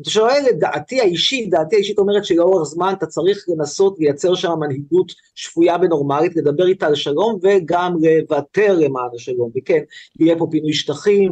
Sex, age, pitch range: male, 30-49, 150-200 Hz